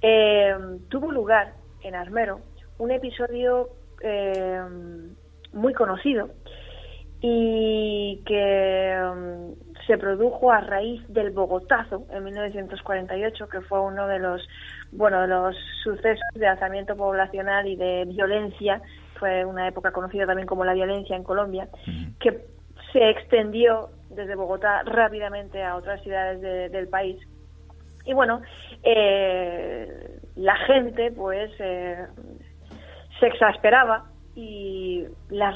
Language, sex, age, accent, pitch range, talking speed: Spanish, female, 30-49, Spanish, 185-220 Hz, 110 wpm